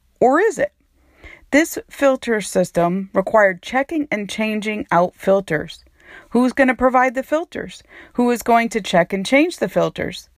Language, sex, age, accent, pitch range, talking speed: English, female, 40-59, American, 180-255 Hz, 155 wpm